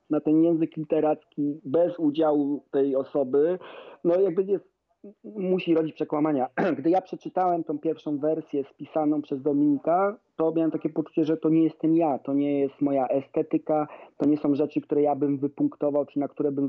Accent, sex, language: native, male, Polish